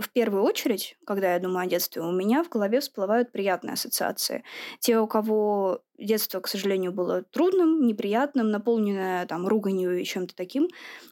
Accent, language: native, Russian